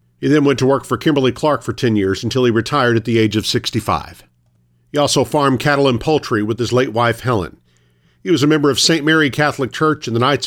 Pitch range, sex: 105-140 Hz, male